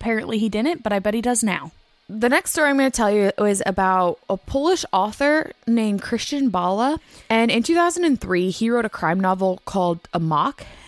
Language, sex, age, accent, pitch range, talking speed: English, female, 20-39, American, 185-270 Hz, 200 wpm